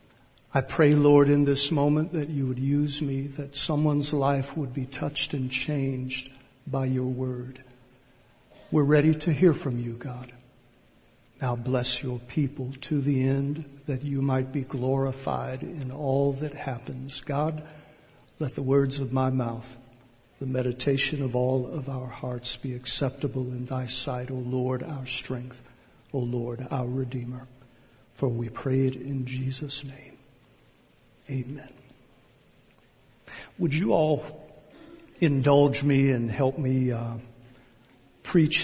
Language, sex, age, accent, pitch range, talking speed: English, male, 60-79, American, 125-145 Hz, 140 wpm